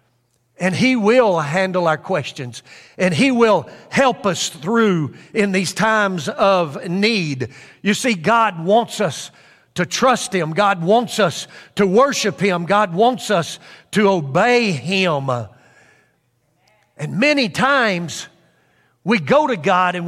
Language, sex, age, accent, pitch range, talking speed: English, male, 50-69, American, 170-235 Hz, 135 wpm